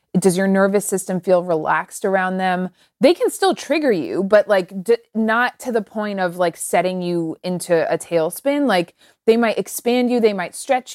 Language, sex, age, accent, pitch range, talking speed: English, female, 20-39, American, 185-235 Hz, 185 wpm